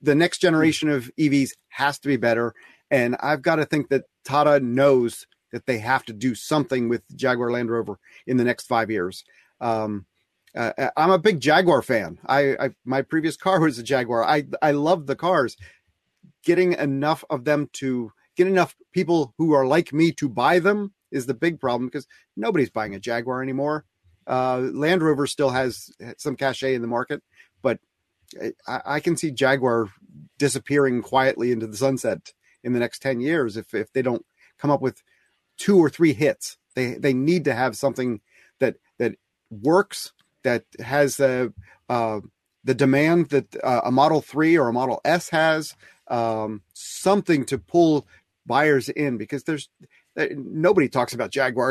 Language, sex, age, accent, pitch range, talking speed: English, male, 30-49, American, 125-160 Hz, 175 wpm